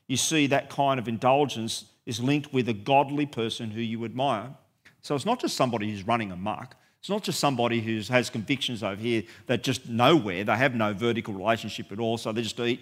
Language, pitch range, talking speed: English, 110-145 Hz, 215 wpm